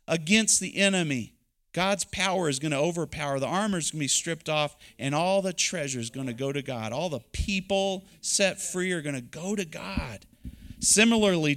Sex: male